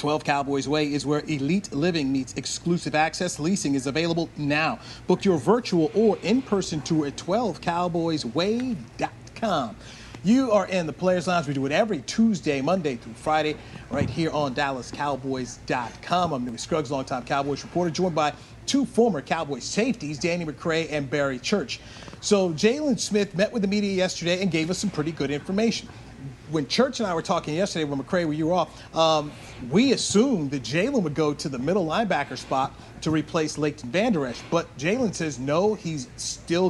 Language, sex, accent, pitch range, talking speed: English, male, American, 145-190 Hz, 175 wpm